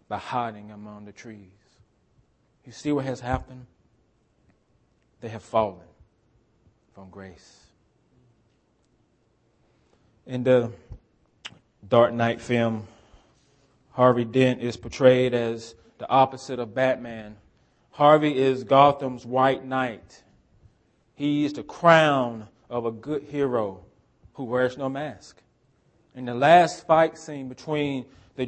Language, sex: English, male